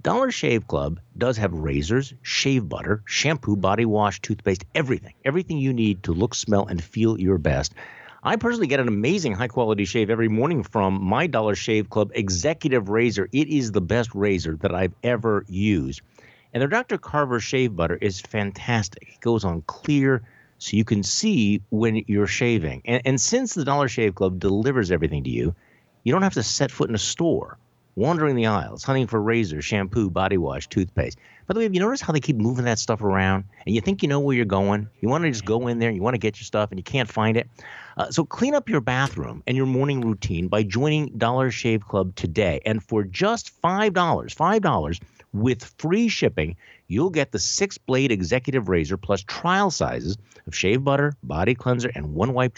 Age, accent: 50-69, American